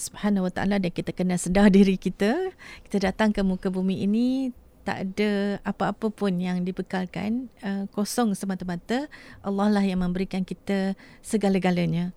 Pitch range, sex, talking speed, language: 190-220 Hz, female, 145 wpm, English